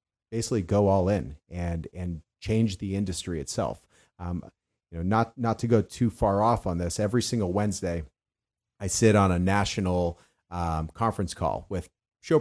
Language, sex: English, male